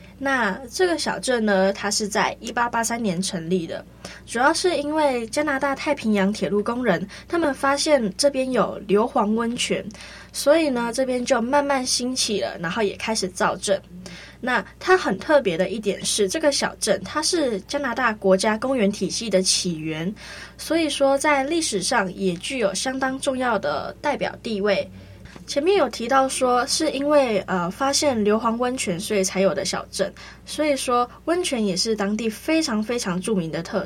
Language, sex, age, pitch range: Chinese, female, 10-29, 195-270 Hz